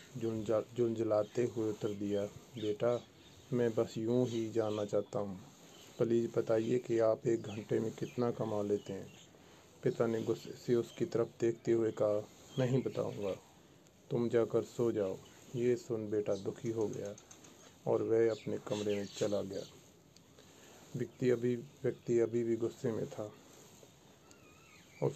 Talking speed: 145 wpm